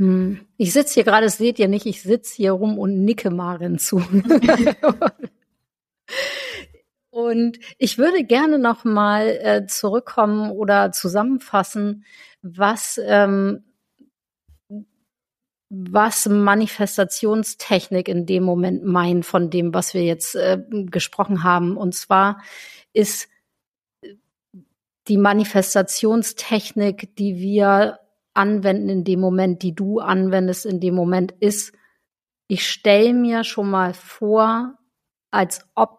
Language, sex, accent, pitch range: German, female, German, 190-220 Hz